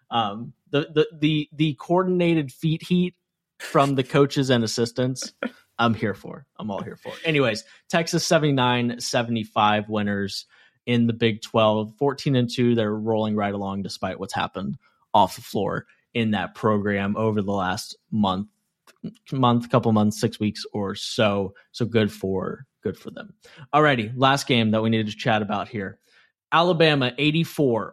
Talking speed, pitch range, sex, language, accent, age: 160 wpm, 110-140 Hz, male, English, American, 20-39